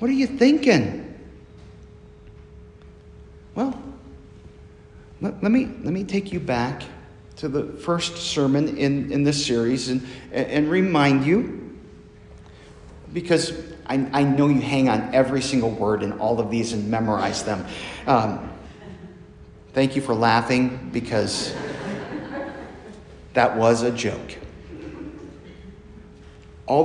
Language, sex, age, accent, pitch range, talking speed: English, male, 50-69, American, 100-150 Hz, 120 wpm